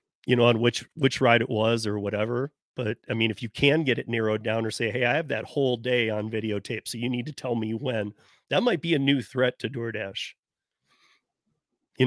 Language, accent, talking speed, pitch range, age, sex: English, American, 230 wpm, 115-130 Hz, 30-49, male